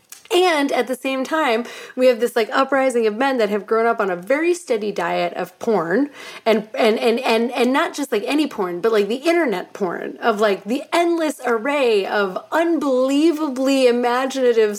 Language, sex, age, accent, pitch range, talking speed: English, female, 30-49, American, 215-285 Hz, 185 wpm